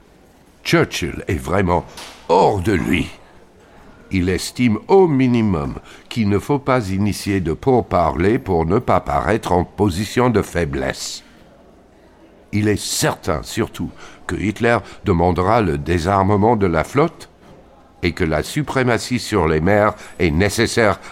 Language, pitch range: French, 80-110 Hz